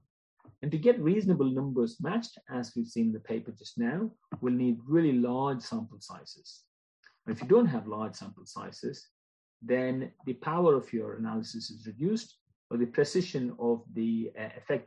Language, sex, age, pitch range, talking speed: English, male, 40-59, 115-175 Hz, 170 wpm